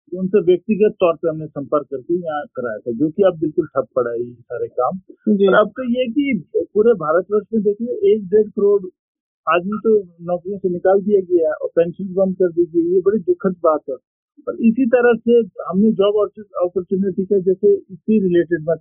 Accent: native